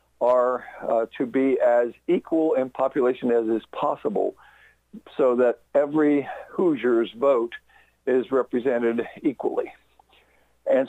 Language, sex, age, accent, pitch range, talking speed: English, male, 60-79, American, 120-175 Hz, 110 wpm